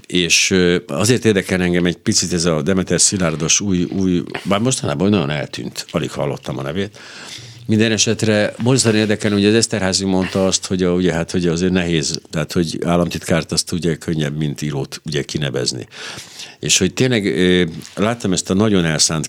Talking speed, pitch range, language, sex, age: 155 wpm, 85-105 Hz, Hungarian, male, 60-79